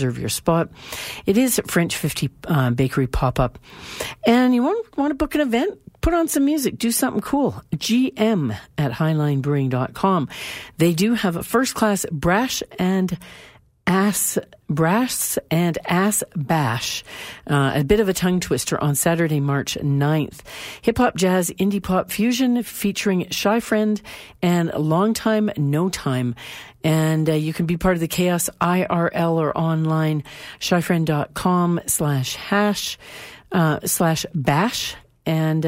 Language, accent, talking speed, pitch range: English, American, 145 wpm, 150-210 Hz